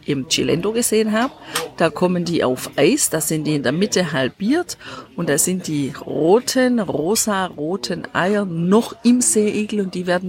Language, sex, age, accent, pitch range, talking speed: German, female, 50-69, German, 170-220 Hz, 175 wpm